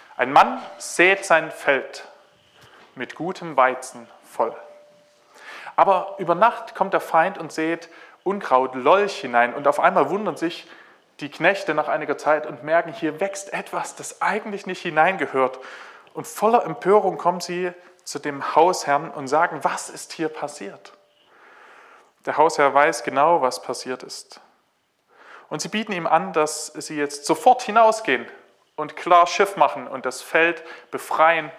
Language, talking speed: German, 150 wpm